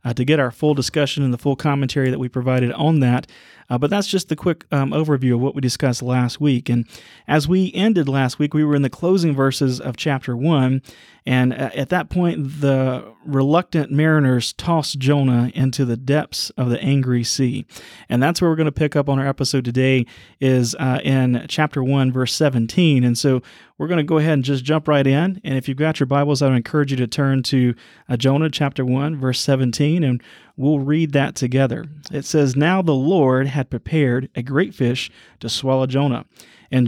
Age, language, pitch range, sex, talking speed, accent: 30-49, English, 125-150 Hz, male, 210 wpm, American